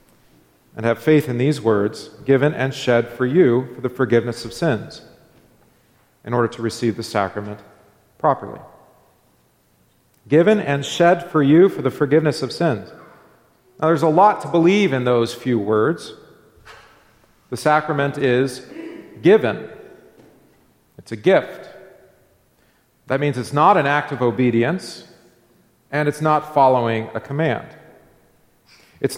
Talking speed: 135 wpm